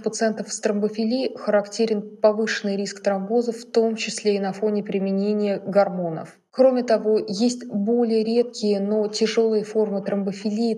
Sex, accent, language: female, native, Russian